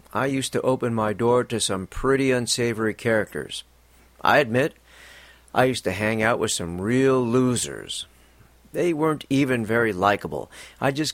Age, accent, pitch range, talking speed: 50-69, American, 85-130 Hz, 155 wpm